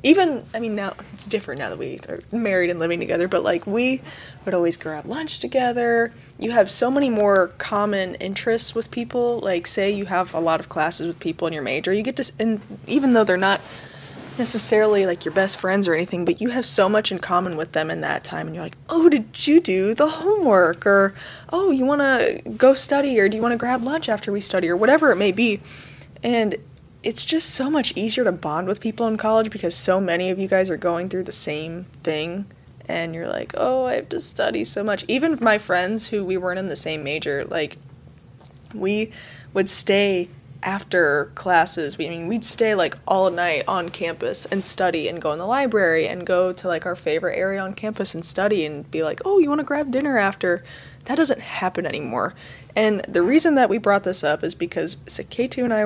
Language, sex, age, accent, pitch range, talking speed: English, female, 20-39, American, 175-235 Hz, 220 wpm